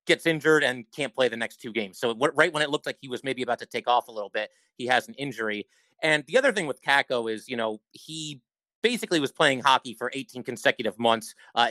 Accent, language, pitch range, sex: American, English, 120-155 Hz, male